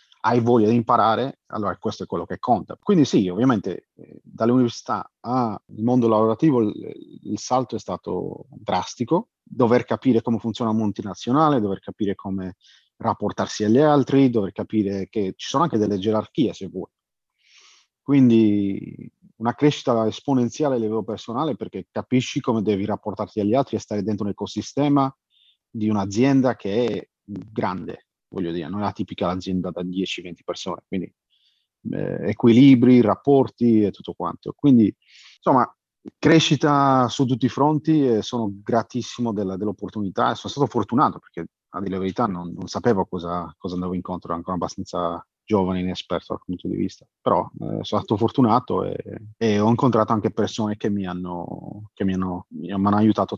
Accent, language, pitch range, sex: native, Italian, 100-120 Hz, male